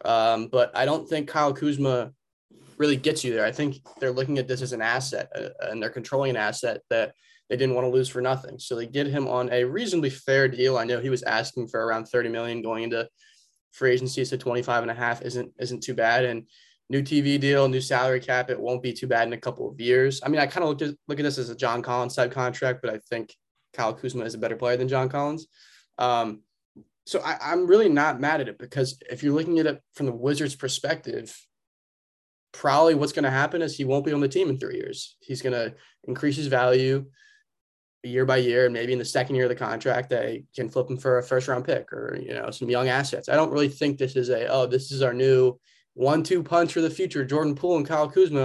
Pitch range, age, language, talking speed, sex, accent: 125-145 Hz, 20-39, English, 245 wpm, male, American